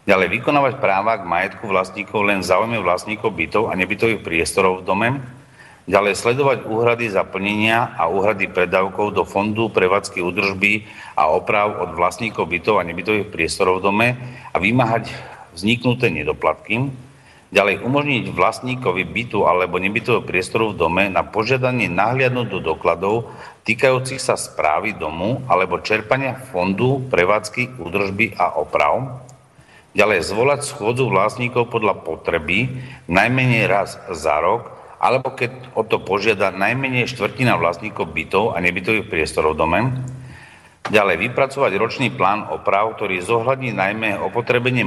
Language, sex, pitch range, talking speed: Slovak, male, 95-125 Hz, 130 wpm